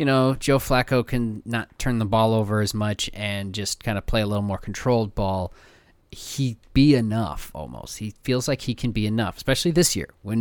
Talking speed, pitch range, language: 215 wpm, 95-120 Hz, English